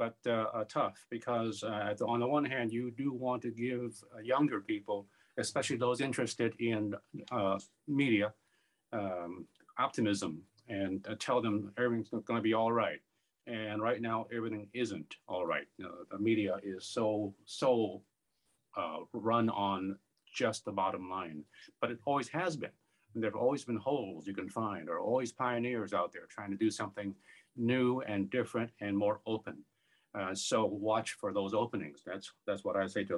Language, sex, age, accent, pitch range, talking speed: English, male, 50-69, American, 100-120 Hz, 175 wpm